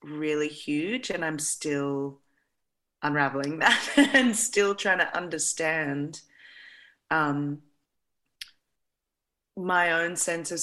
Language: English